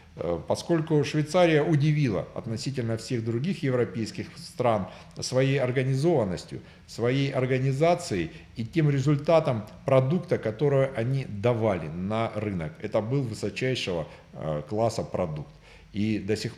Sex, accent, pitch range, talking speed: male, native, 110-150 Hz, 105 wpm